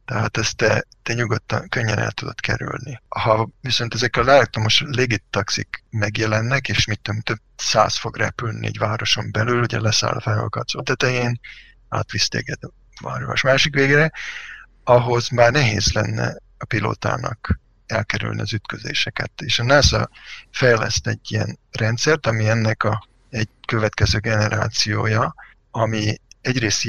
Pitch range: 110-125 Hz